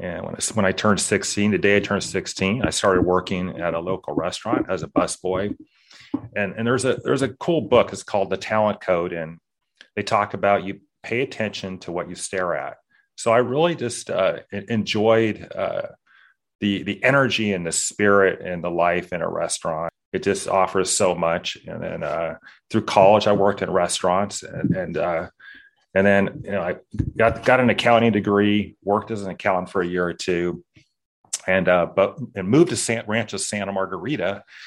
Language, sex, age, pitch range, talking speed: English, male, 30-49, 90-105 Hz, 195 wpm